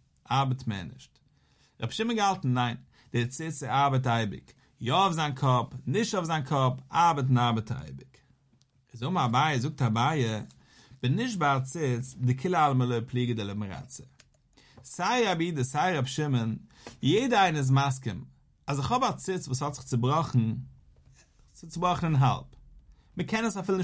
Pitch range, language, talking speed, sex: 125-165 Hz, English, 160 wpm, male